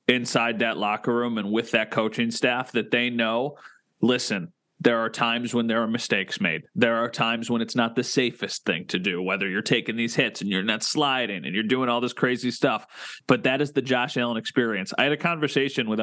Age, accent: 30-49, American